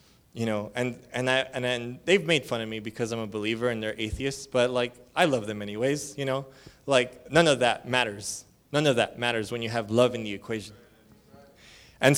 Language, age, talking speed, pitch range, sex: English, 20-39, 215 wpm, 115-140 Hz, male